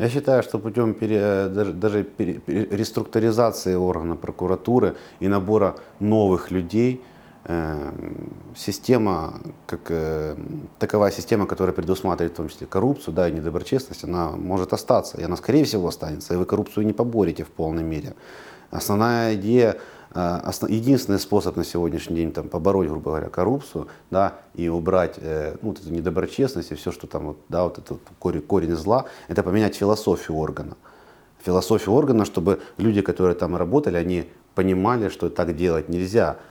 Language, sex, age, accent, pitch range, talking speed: Ukrainian, male, 30-49, native, 85-110 Hz, 155 wpm